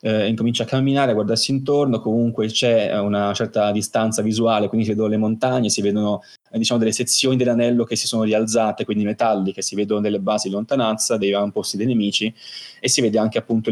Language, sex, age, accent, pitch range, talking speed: Italian, male, 20-39, native, 100-115 Hz, 195 wpm